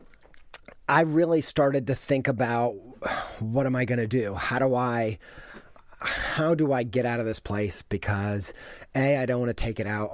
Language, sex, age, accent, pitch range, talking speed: English, male, 30-49, American, 105-140 Hz, 190 wpm